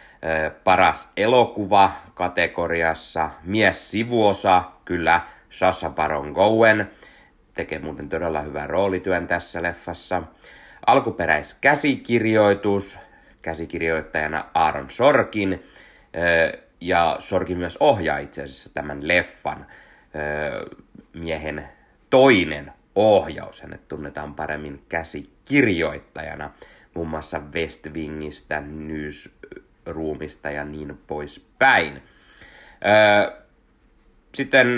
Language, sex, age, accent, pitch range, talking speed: Finnish, male, 30-49, native, 75-100 Hz, 80 wpm